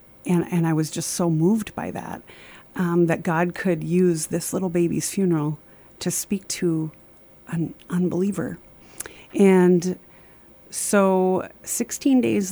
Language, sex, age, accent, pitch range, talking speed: English, female, 30-49, American, 165-180 Hz, 130 wpm